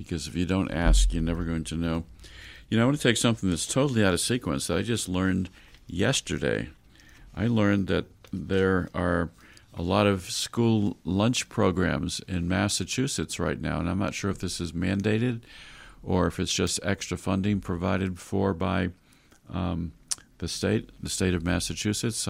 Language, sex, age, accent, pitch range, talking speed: English, male, 50-69, American, 85-105 Hz, 180 wpm